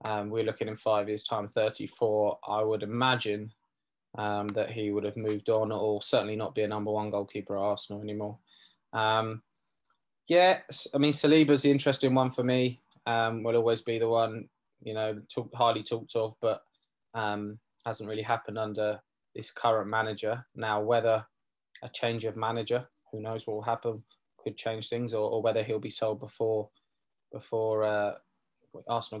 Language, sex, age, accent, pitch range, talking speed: English, male, 20-39, British, 110-130 Hz, 175 wpm